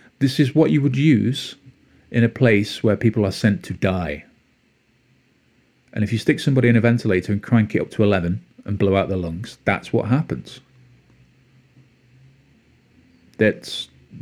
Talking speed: 160 wpm